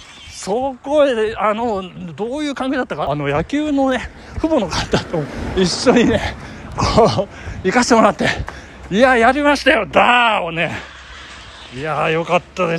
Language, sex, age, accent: Japanese, male, 40-59, native